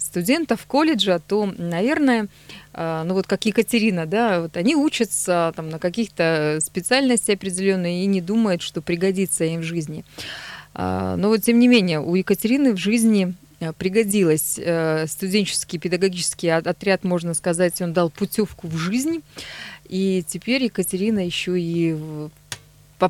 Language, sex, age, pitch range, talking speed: Russian, female, 20-39, 165-205 Hz, 130 wpm